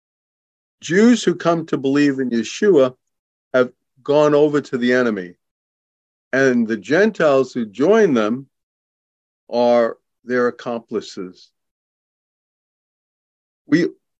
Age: 50-69